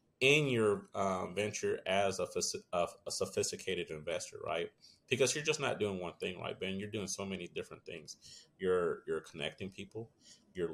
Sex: male